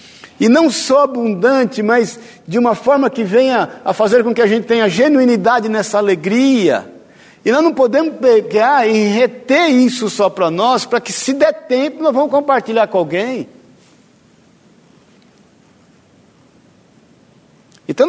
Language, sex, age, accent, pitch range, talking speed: Portuguese, male, 50-69, Brazilian, 165-235 Hz, 140 wpm